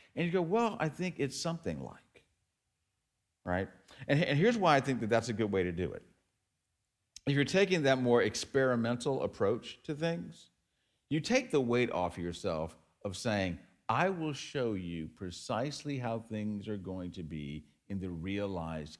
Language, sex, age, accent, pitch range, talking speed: English, male, 50-69, American, 90-140 Hz, 170 wpm